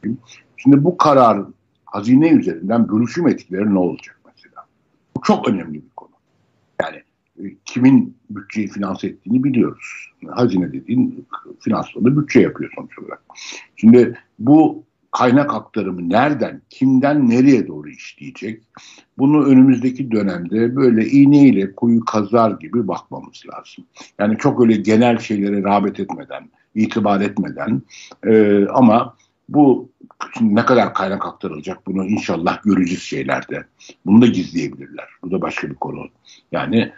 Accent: native